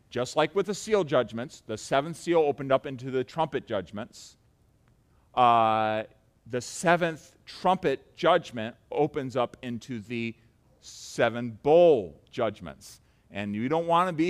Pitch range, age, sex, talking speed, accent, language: 120-160 Hz, 40-59, male, 140 wpm, American, English